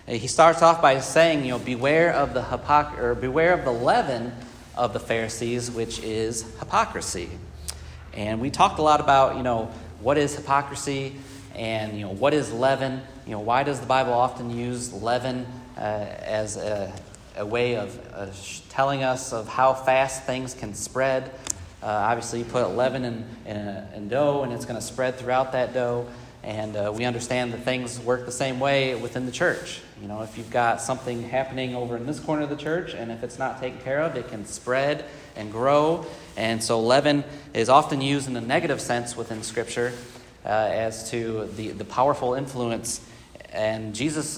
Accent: American